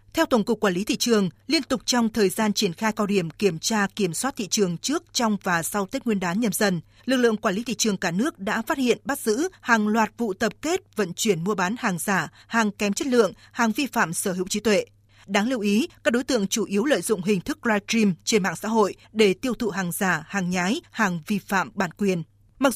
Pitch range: 195-230 Hz